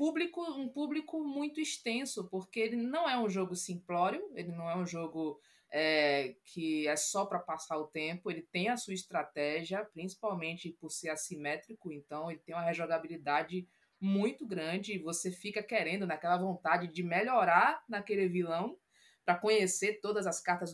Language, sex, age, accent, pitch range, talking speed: Portuguese, female, 20-39, Brazilian, 165-220 Hz, 155 wpm